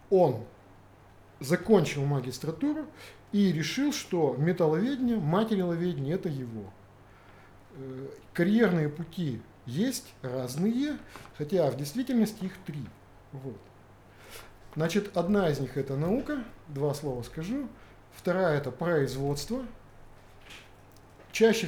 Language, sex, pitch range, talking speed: Russian, male, 125-195 Hz, 90 wpm